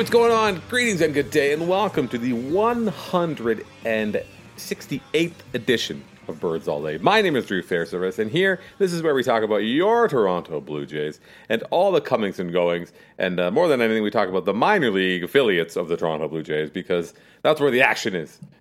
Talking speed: 205 wpm